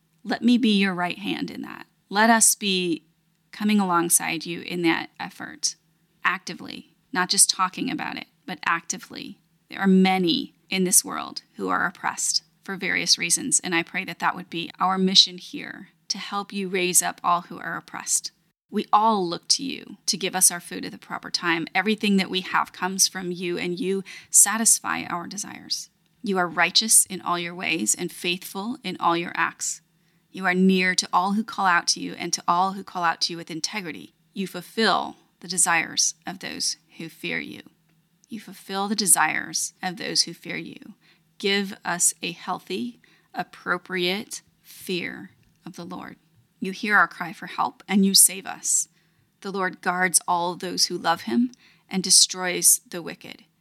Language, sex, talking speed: English, female, 185 wpm